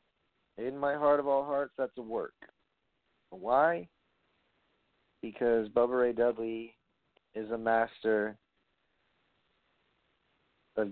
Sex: male